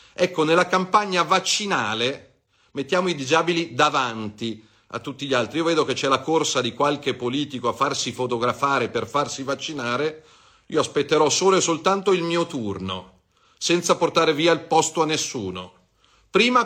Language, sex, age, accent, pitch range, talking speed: Italian, male, 40-59, native, 110-165 Hz, 155 wpm